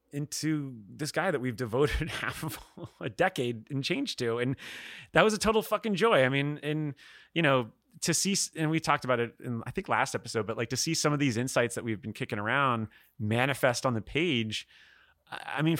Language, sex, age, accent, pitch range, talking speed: English, male, 30-49, American, 115-145 Hz, 215 wpm